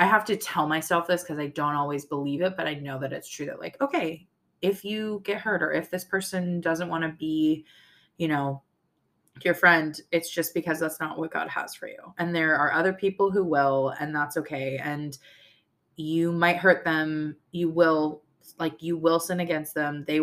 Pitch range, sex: 150-185 Hz, female